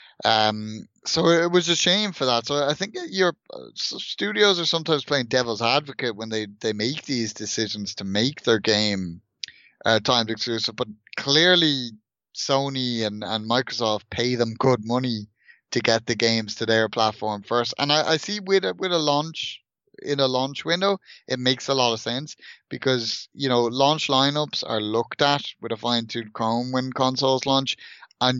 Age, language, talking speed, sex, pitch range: 20-39, English, 180 wpm, male, 110-140 Hz